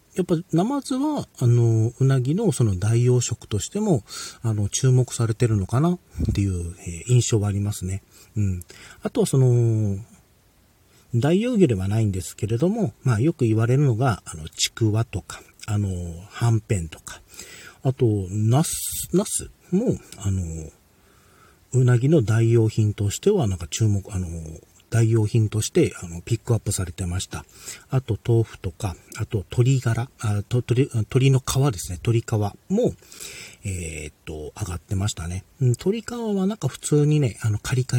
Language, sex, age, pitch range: Japanese, male, 40-59, 100-130 Hz